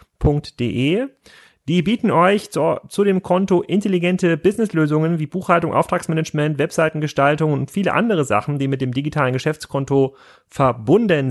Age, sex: 30-49, male